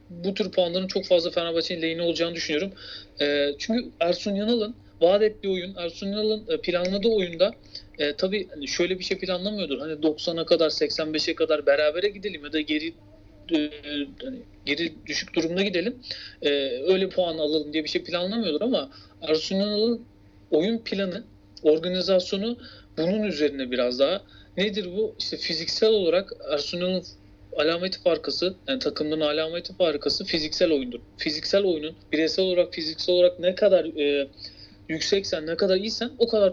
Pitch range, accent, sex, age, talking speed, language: 150-195 Hz, native, male, 40-59, 135 wpm, Turkish